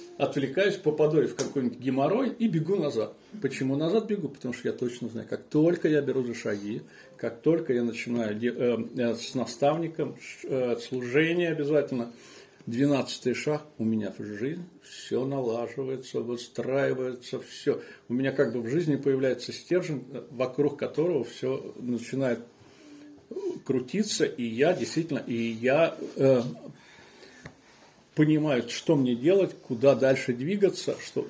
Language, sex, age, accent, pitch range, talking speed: Russian, male, 40-59, native, 125-165 Hz, 135 wpm